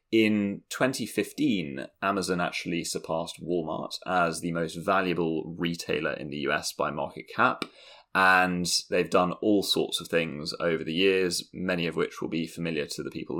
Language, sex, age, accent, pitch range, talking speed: English, male, 20-39, British, 85-95 Hz, 160 wpm